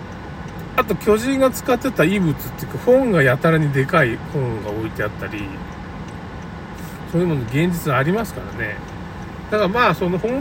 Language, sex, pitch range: Japanese, male, 125-200 Hz